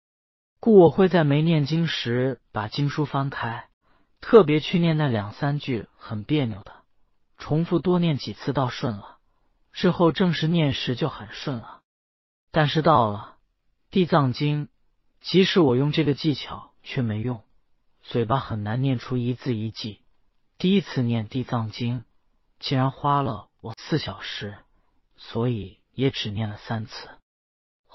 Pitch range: 115-150 Hz